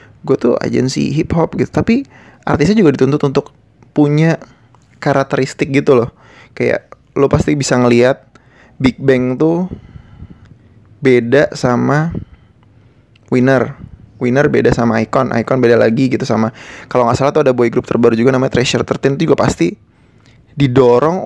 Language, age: Indonesian, 20-39